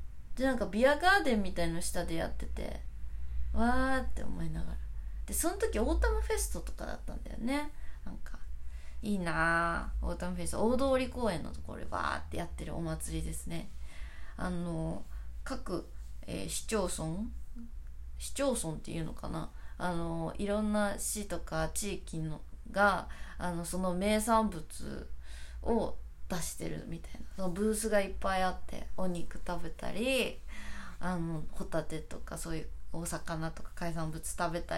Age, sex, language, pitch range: 20-39, female, Japanese, 145-220 Hz